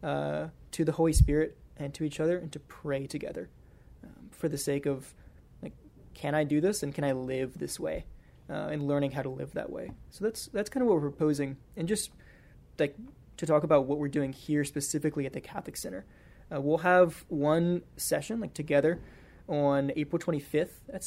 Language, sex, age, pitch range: English, male, 20-39, 140-165 Hz